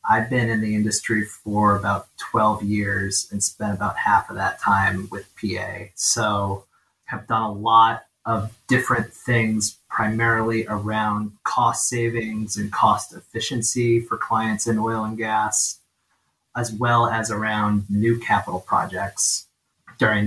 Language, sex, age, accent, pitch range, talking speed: English, male, 30-49, American, 100-115 Hz, 140 wpm